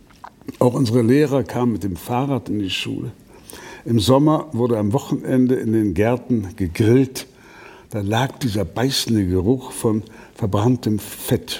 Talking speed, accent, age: 140 wpm, German, 60-79